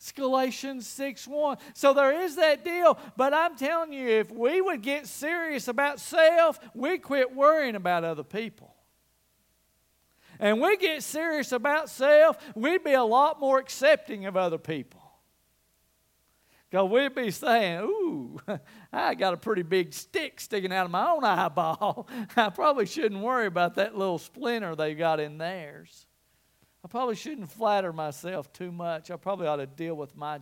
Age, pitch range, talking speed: 50-69, 180-275 Hz, 165 wpm